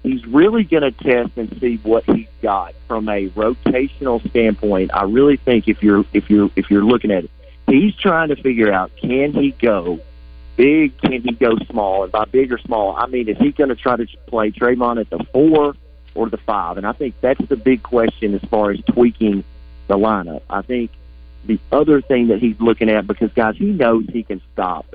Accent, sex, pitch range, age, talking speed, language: American, male, 100-125 Hz, 40-59, 215 wpm, English